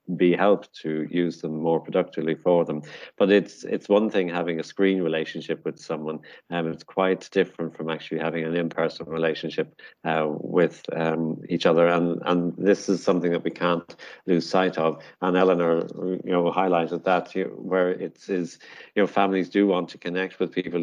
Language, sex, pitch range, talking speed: English, male, 80-90 Hz, 190 wpm